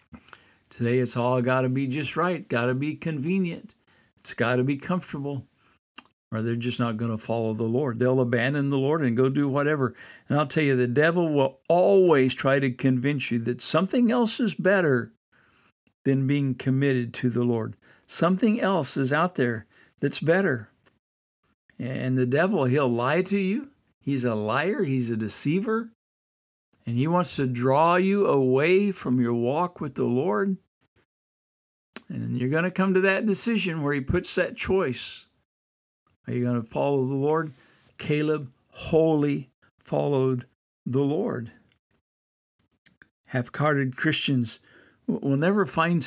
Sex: male